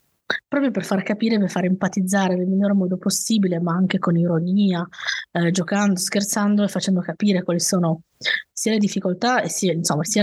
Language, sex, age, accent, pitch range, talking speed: Italian, female, 20-39, native, 170-195 Hz, 175 wpm